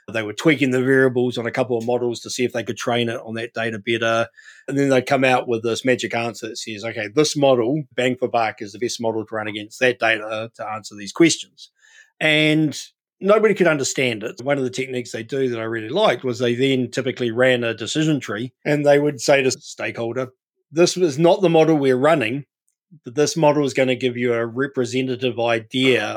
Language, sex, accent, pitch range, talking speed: English, male, Australian, 115-145 Hz, 225 wpm